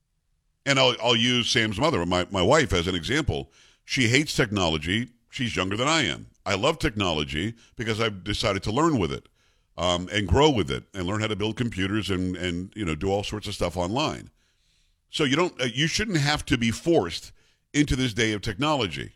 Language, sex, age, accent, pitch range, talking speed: English, male, 50-69, American, 90-125 Hz, 205 wpm